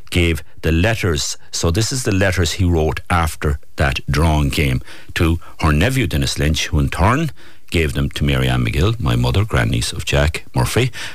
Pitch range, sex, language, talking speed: 75-105 Hz, male, English, 185 wpm